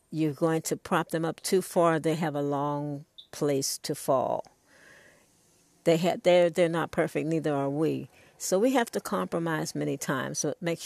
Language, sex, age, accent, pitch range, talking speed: English, female, 60-79, American, 145-170 Hz, 180 wpm